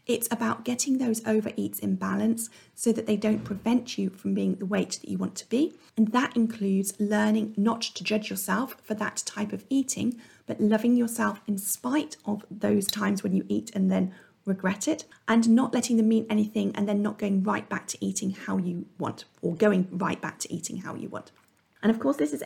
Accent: British